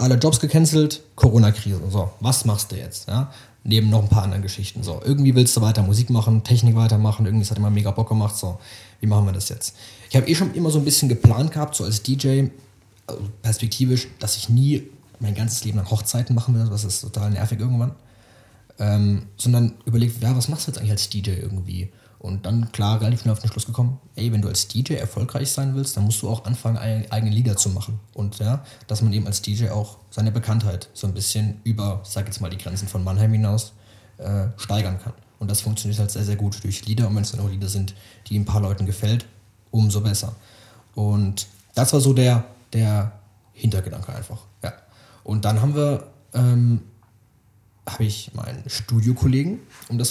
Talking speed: 210 wpm